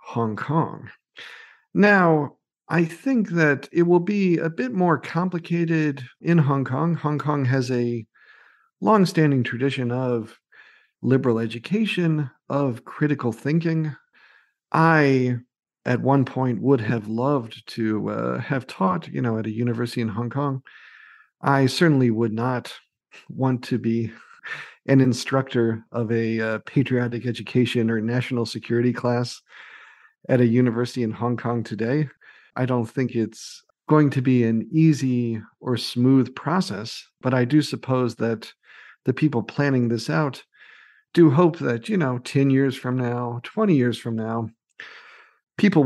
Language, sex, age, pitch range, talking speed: English, male, 50-69, 115-155 Hz, 140 wpm